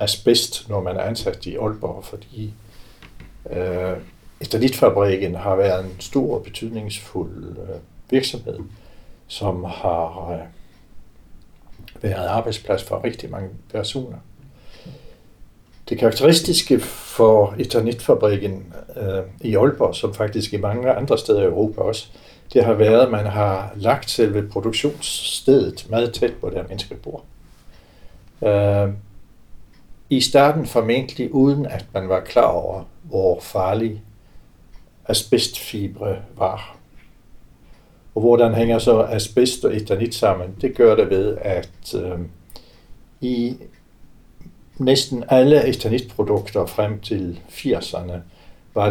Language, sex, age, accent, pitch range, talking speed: Danish, male, 60-79, native, 95-120 Hz, 115 wpm